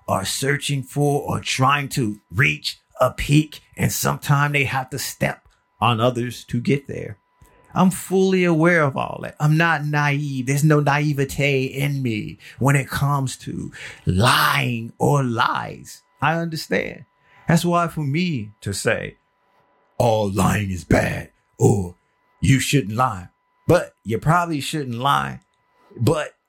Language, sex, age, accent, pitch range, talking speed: English, male, 30-49, American, 115-150 Hz, 145 wpm